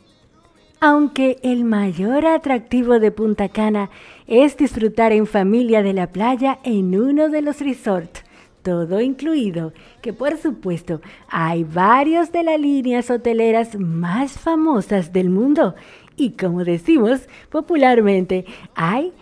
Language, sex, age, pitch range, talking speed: Spanish, female, 40-59, 200-295 Hz, 120 wpm